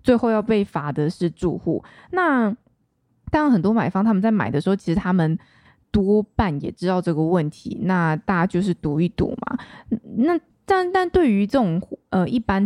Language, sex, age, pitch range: Chinese, female, 20-39, 165-220 Hz